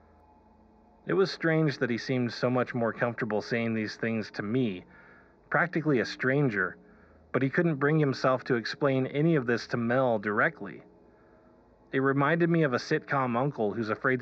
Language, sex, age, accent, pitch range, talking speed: English, male, 30-49, American, 100-140 Hz, 170 wpm